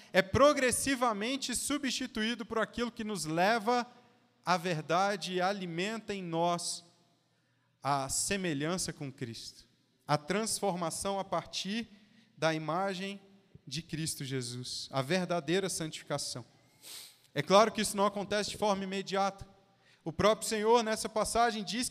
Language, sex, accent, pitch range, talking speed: Portuguese, male, Brazilian, 185-225 Hz, 125 wpm